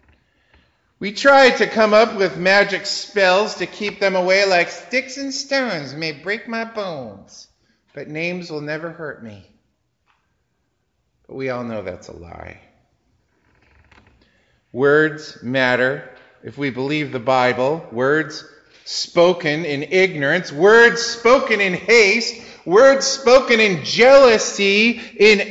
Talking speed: 125 wpm